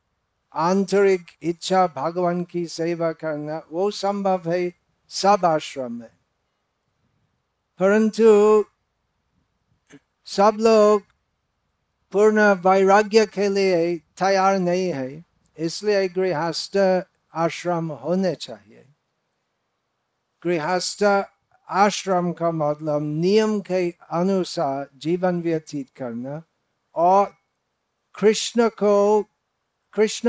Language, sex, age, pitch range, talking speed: Hindi, male, 60-79, 145-190 Hz, 80 wpm